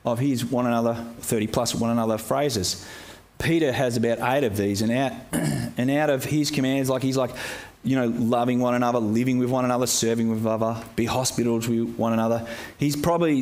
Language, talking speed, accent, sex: English, 195 wpm, Australian, male